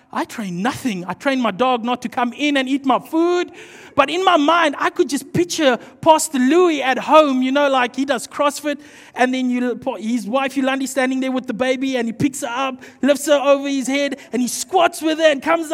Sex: male